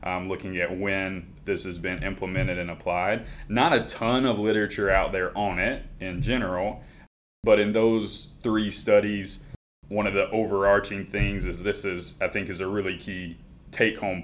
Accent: American